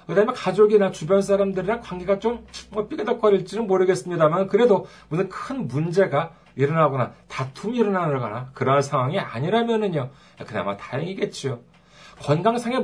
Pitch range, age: 150-225 Hz, 40-59